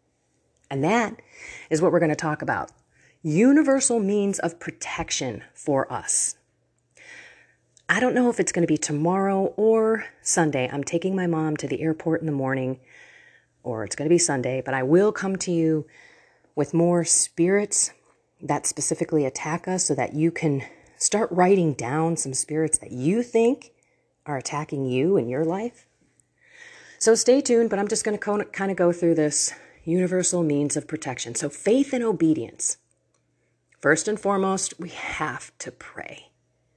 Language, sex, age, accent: English, female, 30-49, American